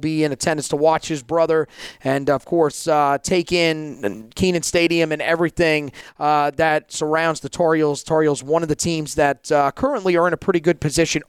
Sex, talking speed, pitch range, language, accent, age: male, 190 wpm, 150-190 Hz, English, American, 30-49